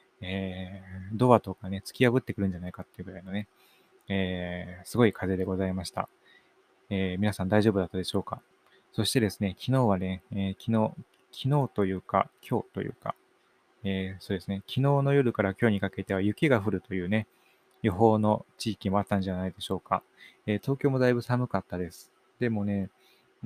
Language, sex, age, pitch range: Japanese, male, 20-39, 95-115 Hz